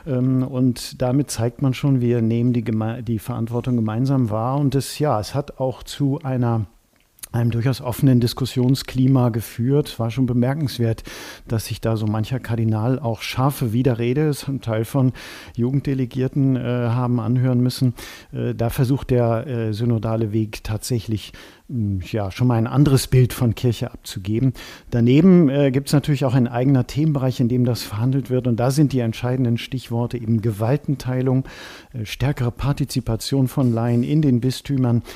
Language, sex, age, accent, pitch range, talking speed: German, male, 50-69, German, 115-135 Hz, 160 wpm